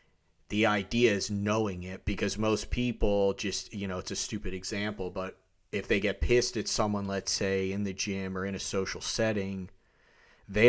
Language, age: English, 30-49